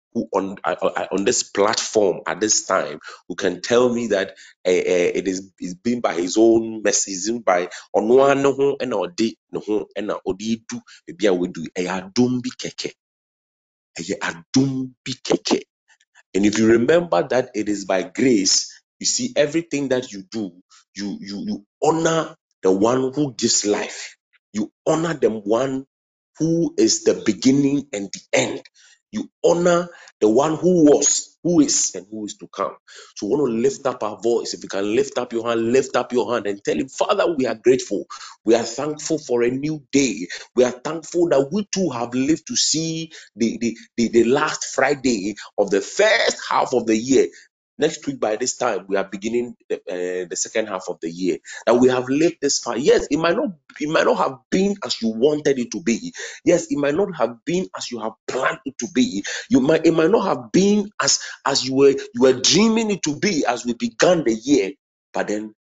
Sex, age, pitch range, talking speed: male, 30-49, 110-155 Hz, 190 wpm